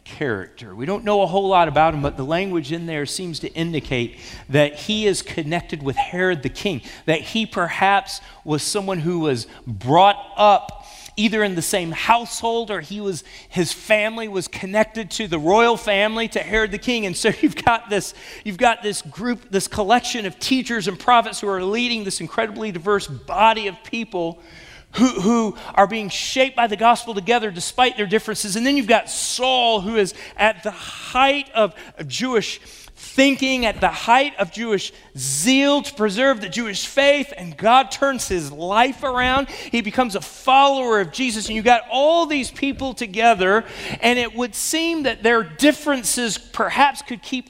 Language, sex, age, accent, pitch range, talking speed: English, male, 40-59, American, 190-245 Hz, 180 wpm